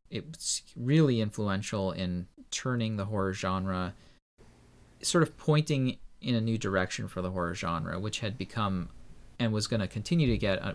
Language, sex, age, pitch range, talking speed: English, male, 30-49, 90-115 Hz, 175 wpm